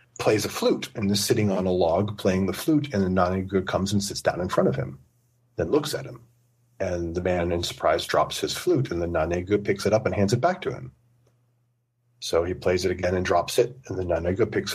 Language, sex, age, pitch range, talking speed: English, male, 40-59, 105-135 Hz, 240 wpm